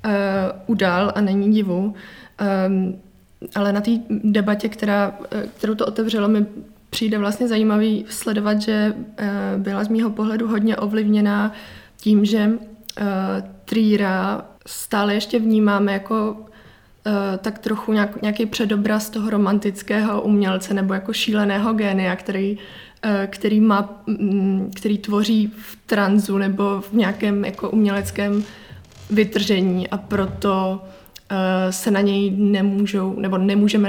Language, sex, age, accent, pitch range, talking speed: Czech, female, 20-39, native, 195-215 Hz, 110 wpm